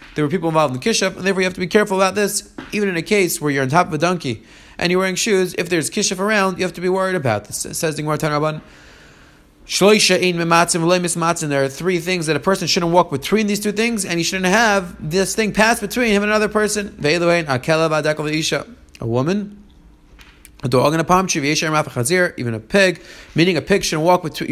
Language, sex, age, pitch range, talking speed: English, male, 30-49, 155-185 Hz, 210 wpm